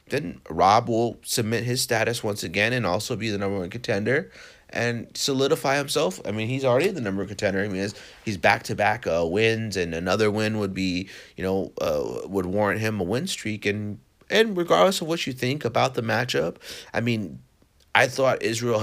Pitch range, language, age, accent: 95-115 Hz, English, 30-49, American